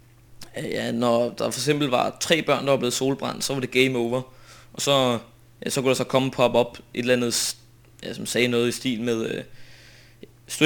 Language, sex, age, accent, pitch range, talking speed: Danish, male, 20-39, native, 115-135 Hz, 225 wpm